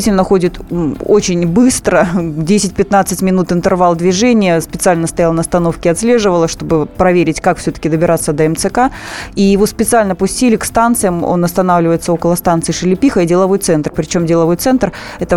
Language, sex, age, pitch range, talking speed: Russian, female, 20-39, 170-200 Hz, 145 wpm